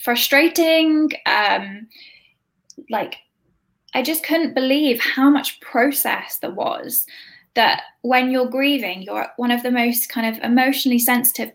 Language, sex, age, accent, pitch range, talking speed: English, female, 10-29, British, 225-265 Hz, 130 wpm